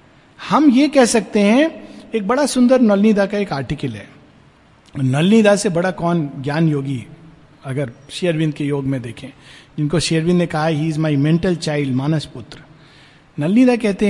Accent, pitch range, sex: native, 150-230 Hz, male